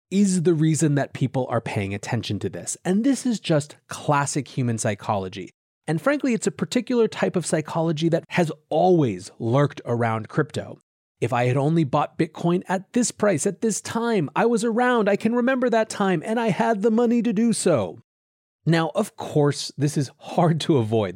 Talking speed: 190 wpm